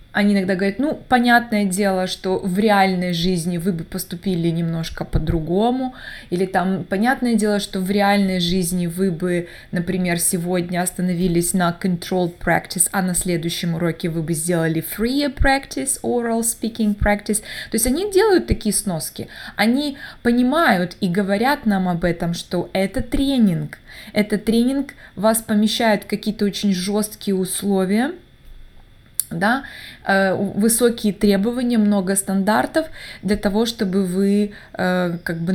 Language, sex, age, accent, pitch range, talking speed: Russian, female, 20-39, native, 180-220 Hz, 130 wpm